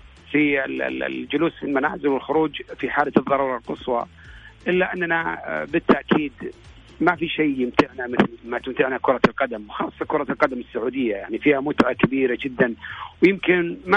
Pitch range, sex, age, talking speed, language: 125-165 Hz, male, 50-69, 135 wpm, Arabic